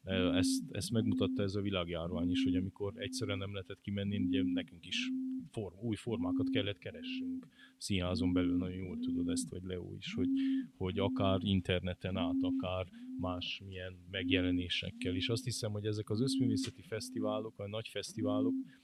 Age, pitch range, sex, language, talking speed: 20-39, 95-125 Hz, male, Hungarian, 155 wpm